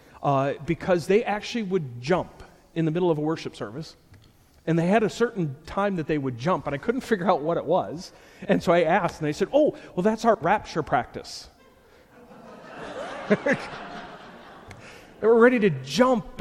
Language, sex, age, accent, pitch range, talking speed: English, male, 40-59, American, 145-185 Hz, 180 wpm